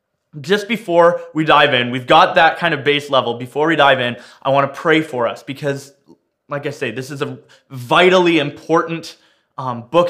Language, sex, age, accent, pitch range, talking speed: English, male, 20-39, American, 125-145 Hz, 190 wpm